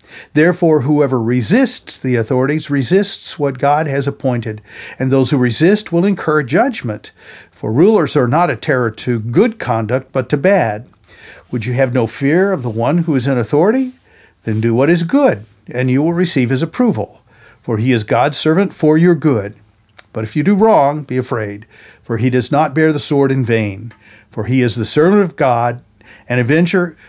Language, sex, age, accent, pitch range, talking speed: English, male, 50-69, American, 120-165 Hz, 190 wpm